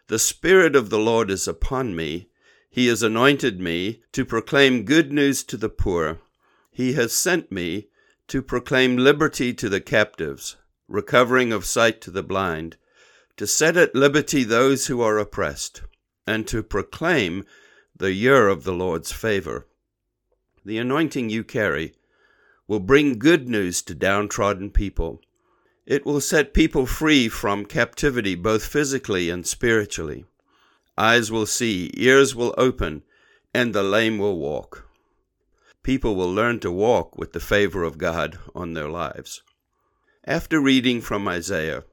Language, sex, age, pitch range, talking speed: English, male, 60-79, 100-135 Hz, 145 wpm